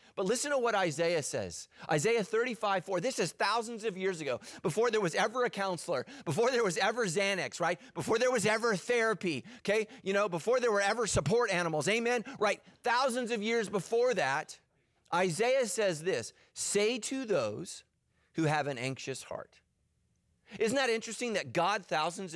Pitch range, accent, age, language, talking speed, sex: 140-205 Hz, American, 30-49, English, 175 wpm, male